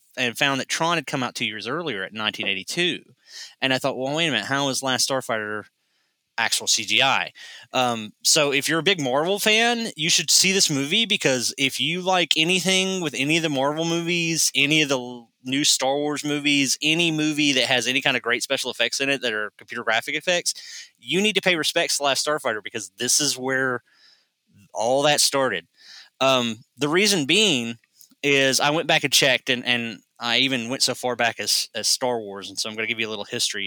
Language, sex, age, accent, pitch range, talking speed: English, male, 20-39, American, 110-150 Hz, 215 wpm